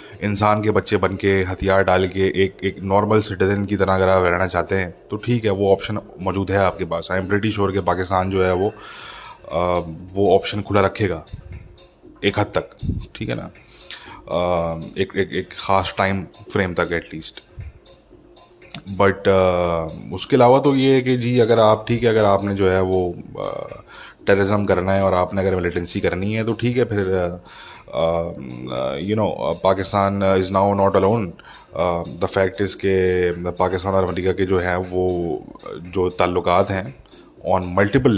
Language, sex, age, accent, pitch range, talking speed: English, male, 20-39, Indian, 90-100 Hz, 110 wpm